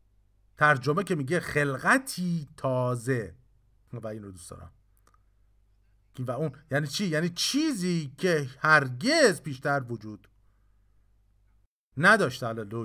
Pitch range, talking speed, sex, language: 100-150 Hz, 105 wpm, male, Persian